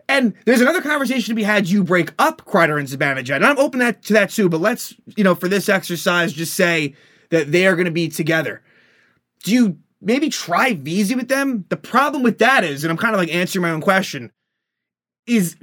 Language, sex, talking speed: English, male, 220 wpm